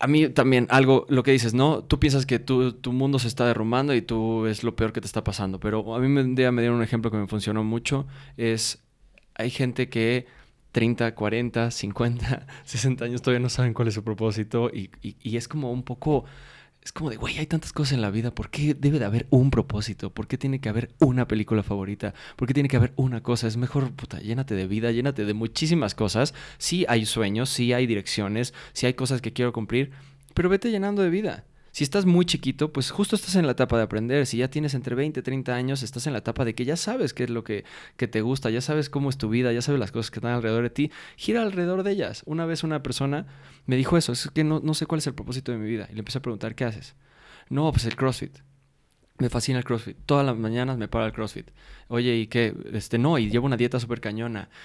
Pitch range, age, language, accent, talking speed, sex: 115-140 Hz, 20-39, Spanish, Mexican, 245 wpm, male